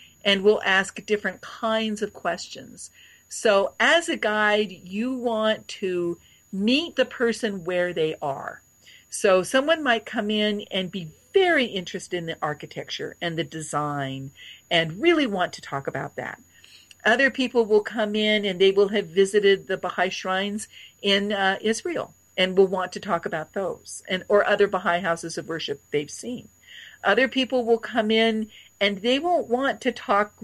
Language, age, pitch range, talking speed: English, 50-69, 180-230 Hz, 170 wpm